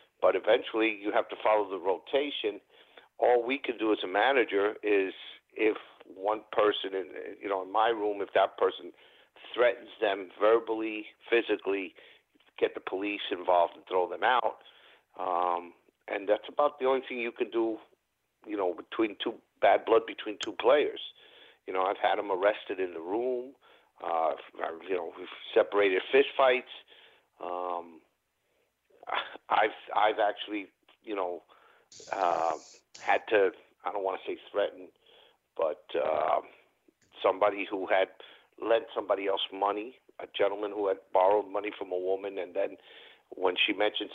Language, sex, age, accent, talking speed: English, male, 50-69, American, 155 wpm